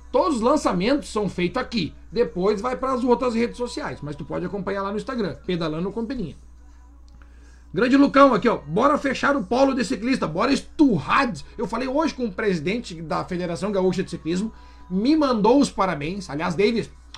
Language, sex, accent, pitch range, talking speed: Portuguese, male, Brazilian, 155-245 Hz, 180 wpm